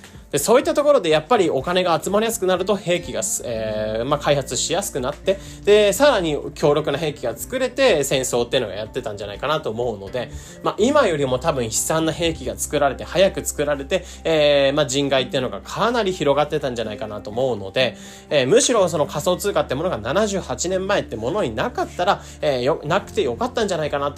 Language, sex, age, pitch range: Japanese, male, 20-39, 120-195 Hz